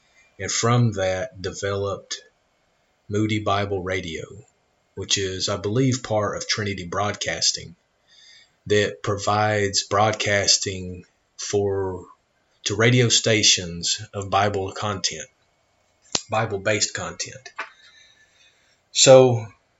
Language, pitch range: English, 100-110 Hz